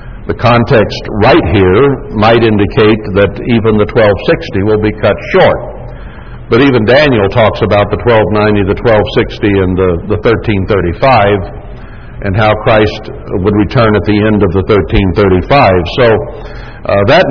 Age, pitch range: 60-79, 100-120 Hz